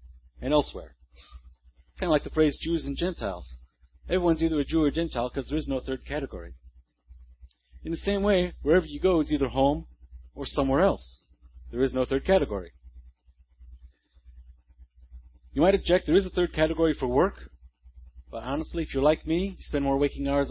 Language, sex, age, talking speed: English, male, 40-59, 185 wpm